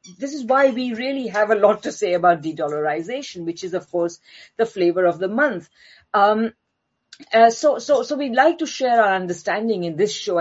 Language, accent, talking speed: English, Indian, 200 wpm